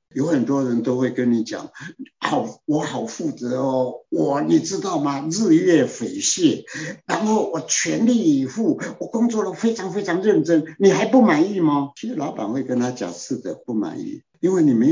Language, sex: Chinese, male